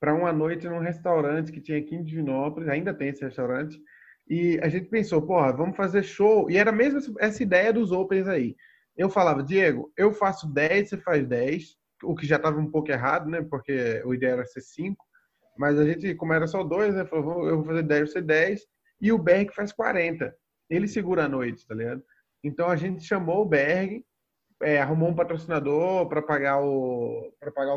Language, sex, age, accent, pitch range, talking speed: Portuguese, male, 20-39, Brazilian, 150-195 Hz, 195 wpm